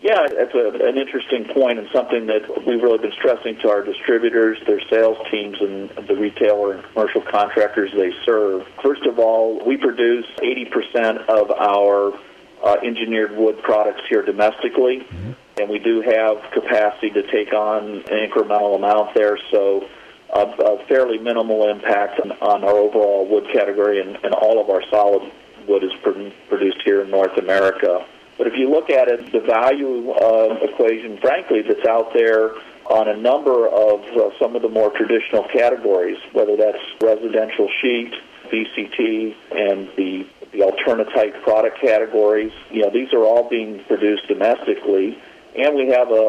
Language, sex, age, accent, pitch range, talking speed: English, male, 40-59, American, 100-120 Hz, 160 wpm